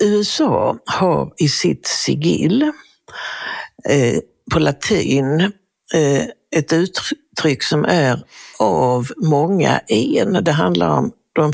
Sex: female